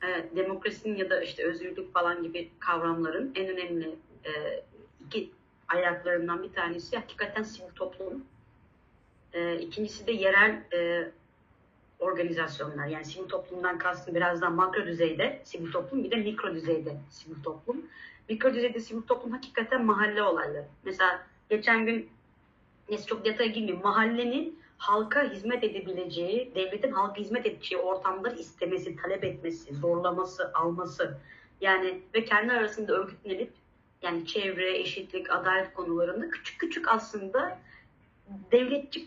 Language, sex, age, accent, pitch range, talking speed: Turkish, female, 30-49, native, 175-230 Hz, 120 wpm